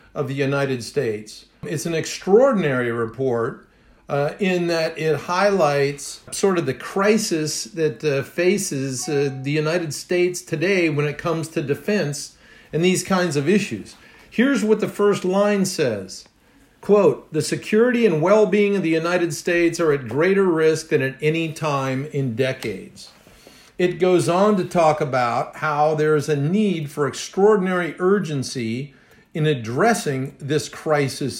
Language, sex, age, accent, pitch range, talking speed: English, male, 50-69, American, 135-175 Hz, 150 wpm